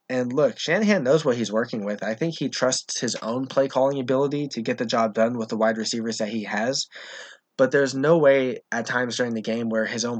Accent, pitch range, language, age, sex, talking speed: American, 110-125 Hz, English, 20-39, male, 240 wpm